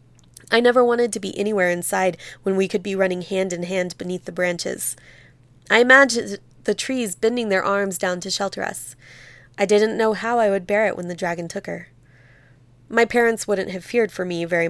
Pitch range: 180-210 Hz